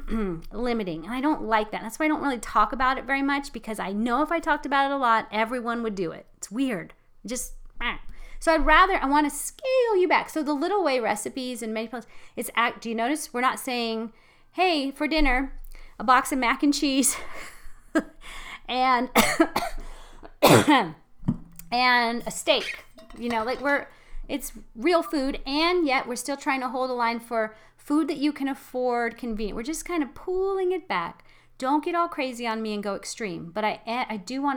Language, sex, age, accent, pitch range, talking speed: English, female, 30-49, American, 215-275 Hz, 205 wpm